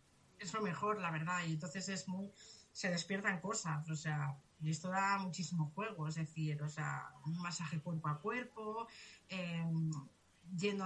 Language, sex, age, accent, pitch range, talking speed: Spanish, female, 30-49, Spanish, 170-225 Hz, 165 wpm